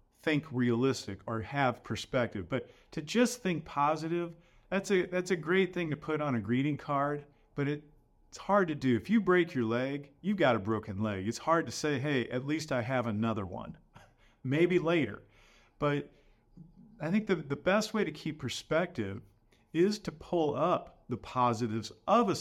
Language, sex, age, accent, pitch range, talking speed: English, male, 50-69, American, 115-155 Hz, 185 wpm